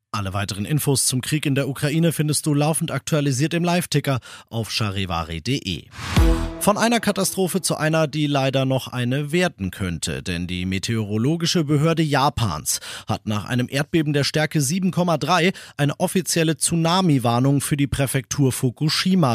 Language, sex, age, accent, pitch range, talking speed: German, male, 40-59, German, 120-160 Hz, 145 wpm